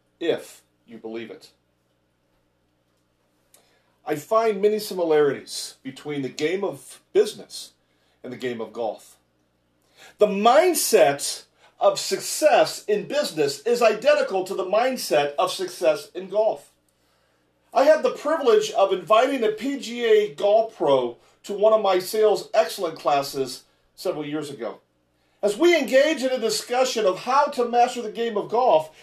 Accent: American